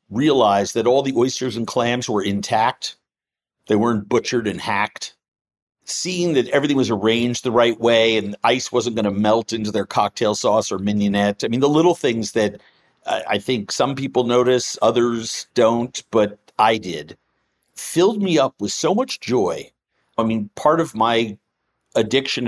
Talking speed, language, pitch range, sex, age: 170 wpm, English, 110-135 Hz, male, 50-69